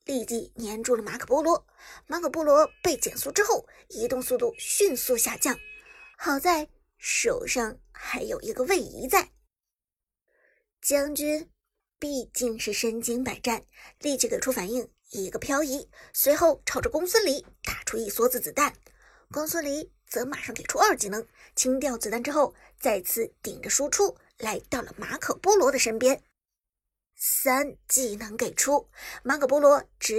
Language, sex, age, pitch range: Chinese, male, 50-69, 250-380 Hz